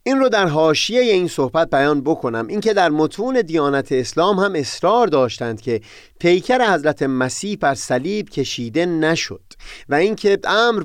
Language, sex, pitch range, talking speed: Persian, male, 130-205 Hz, 150 wpm